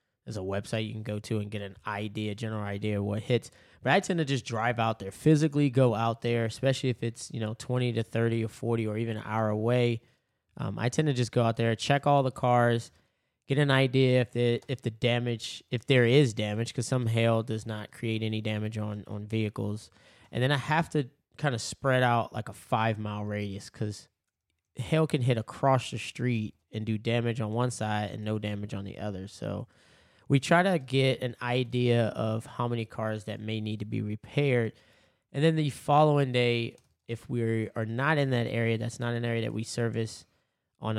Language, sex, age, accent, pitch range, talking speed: English, male, 20-39, American, 110-125 Hz, 215 wpm